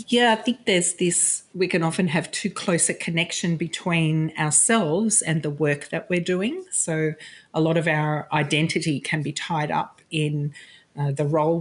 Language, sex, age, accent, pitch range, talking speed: English, female, 40-59, Australian, 155-190 Hz, 180 wpm